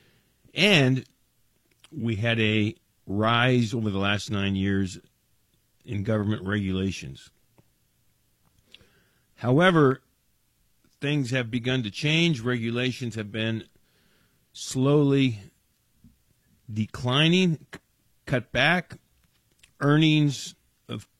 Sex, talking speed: male, 80 wpm